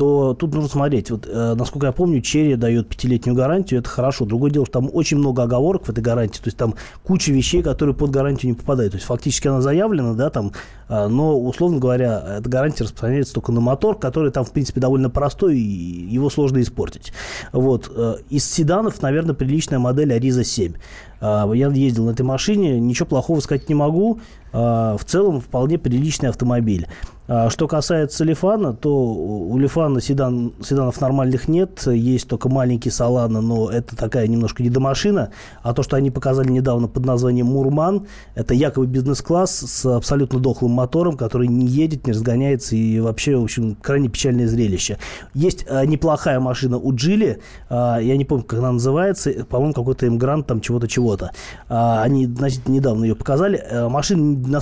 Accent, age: native, 20-39